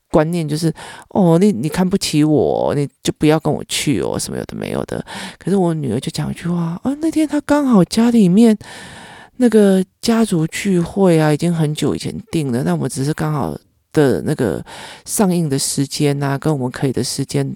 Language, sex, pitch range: Chinese, male, 145-200 Hz